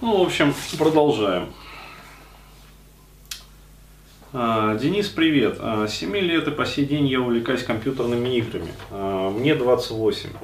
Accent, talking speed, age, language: native, 115 wpm, 30-49, Russian